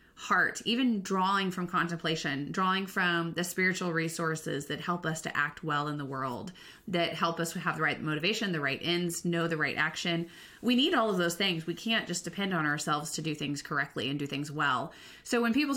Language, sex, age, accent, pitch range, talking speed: English, female, 30-49, American, 160-210 Hz, 215 wpm